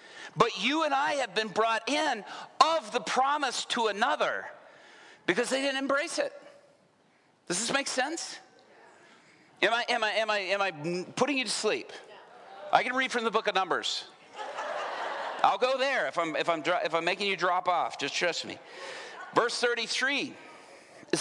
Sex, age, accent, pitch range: male, 50-69, American, 210-285 Hz